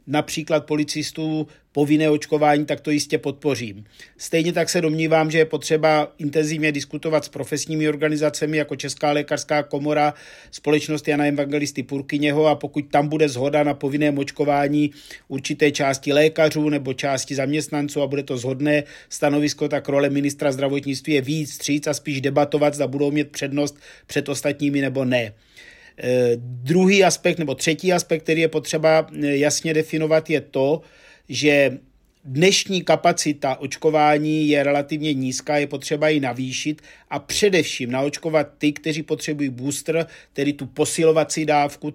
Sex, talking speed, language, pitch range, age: male, 140 wpm, Czech, 145-160 Hz, 50-69